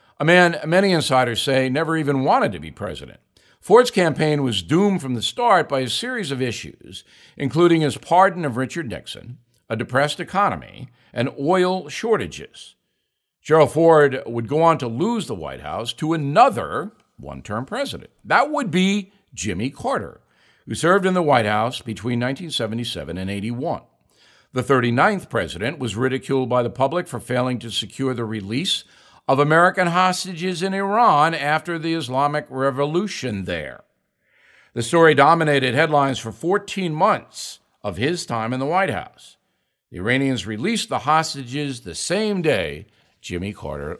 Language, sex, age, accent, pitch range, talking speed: English, male, 60-79, American, 125-170 Hz, 155 wpm